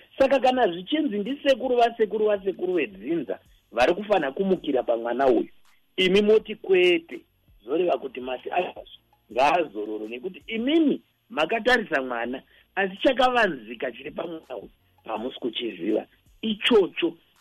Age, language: 50-69, English